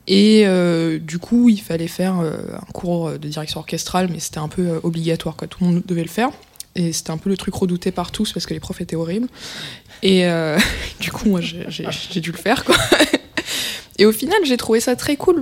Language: French